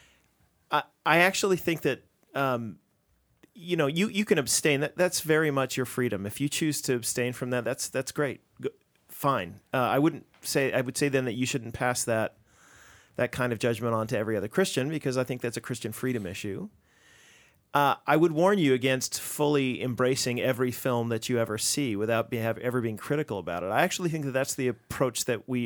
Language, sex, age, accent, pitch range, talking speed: English, male, 40-59, American, 120-145 Hz, 210 wpm